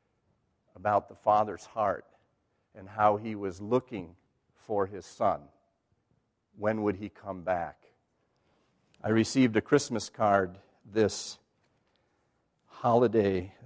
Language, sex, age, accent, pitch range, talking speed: English, male, 50-69, American, 95-115 Hz, 105 wpm